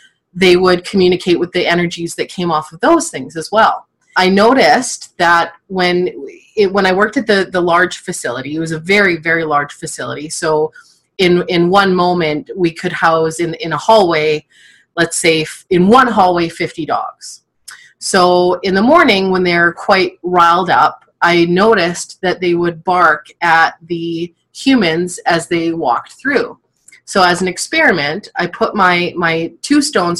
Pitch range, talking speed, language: 165-190 Hz, 170 wpm, English